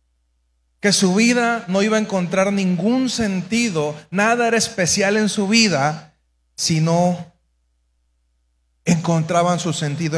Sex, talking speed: male, 120 wpm